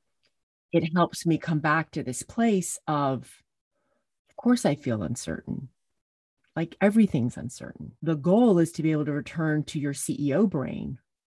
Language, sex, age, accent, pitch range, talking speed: English, female, 30-49, American, 150-205 Hz, 155 wpm